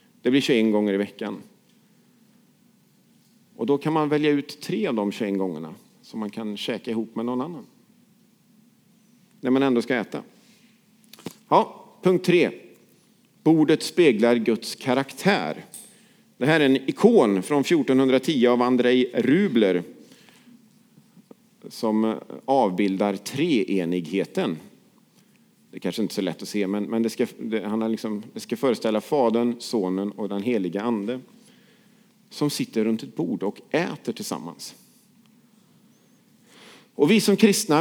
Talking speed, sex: 135 wpm, male